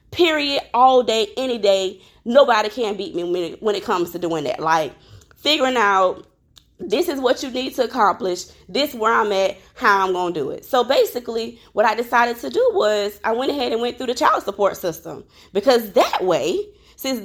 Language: English